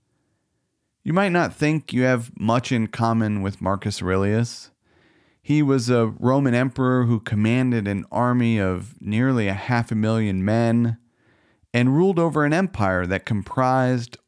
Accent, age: American, 40-59